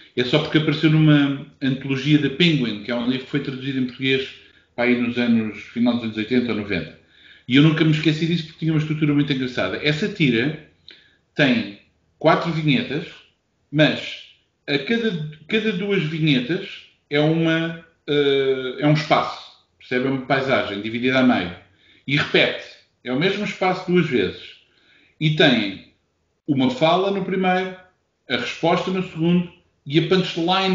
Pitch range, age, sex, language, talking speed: 130-170 Hz, 40-59, male, Portuguese, 160 wpm